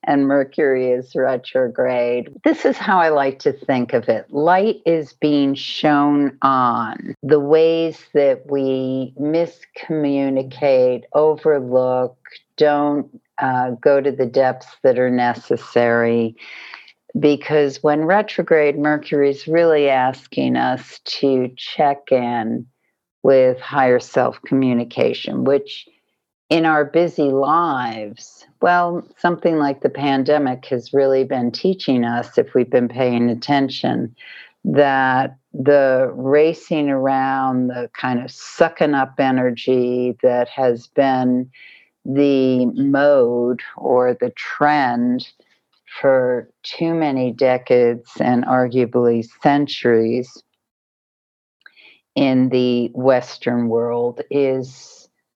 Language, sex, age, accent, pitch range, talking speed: English, female, 50-69, American, 125-145 Hz, 105 wpm